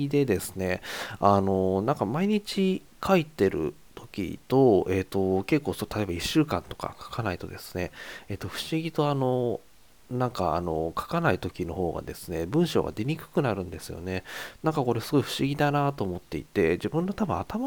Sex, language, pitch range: male, Japanese, 90-140 Hz